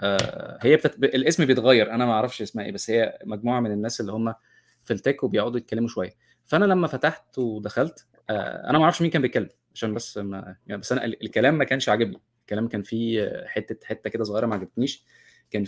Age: 20-39